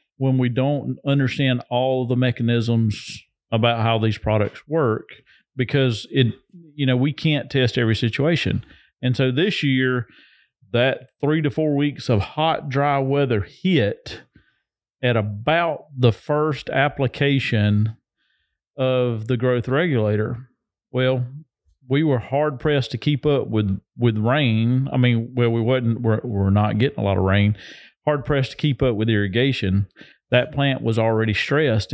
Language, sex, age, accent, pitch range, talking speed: English, male, 40-59, American, 110-135 Hz, 150 wpm